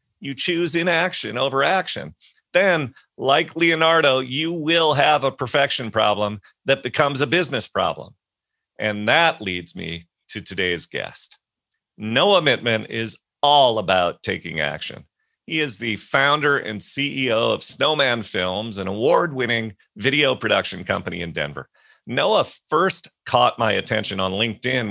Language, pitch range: English, 105-150 Hz